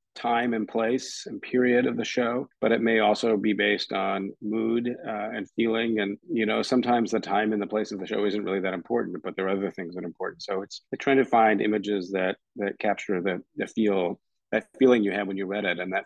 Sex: male